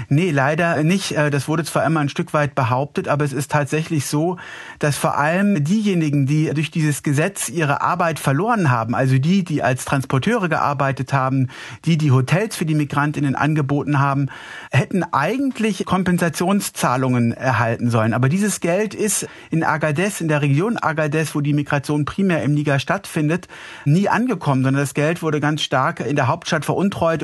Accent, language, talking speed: German, German, 170 wpm